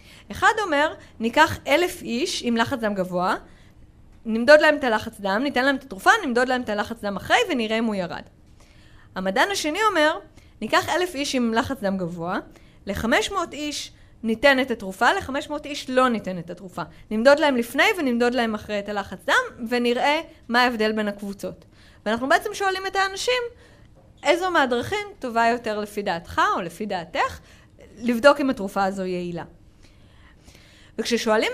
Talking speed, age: 155 wpm, 20-39